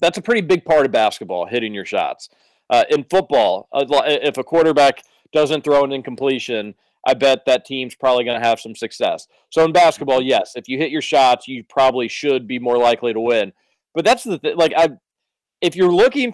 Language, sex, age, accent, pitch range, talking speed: English, male, 40-59, American, 135-205 Hz, 200 wpm